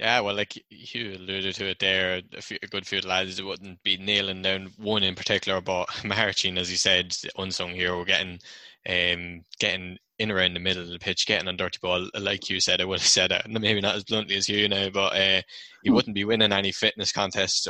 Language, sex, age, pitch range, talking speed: English, male, 10-29, 90-100 Hz, 225 wpm